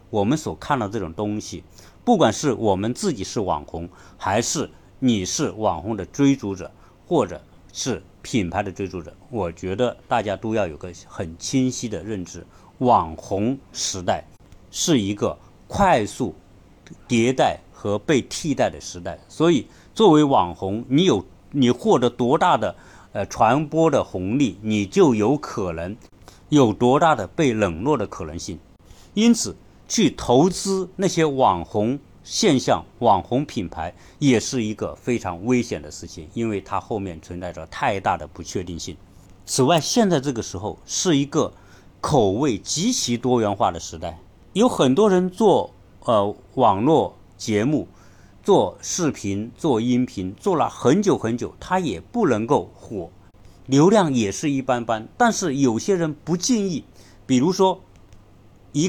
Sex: male